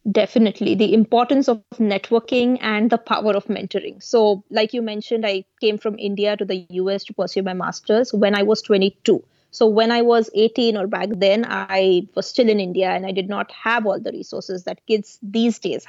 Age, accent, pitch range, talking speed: 20-39, Indian, 205-245 Hz, 205 wpm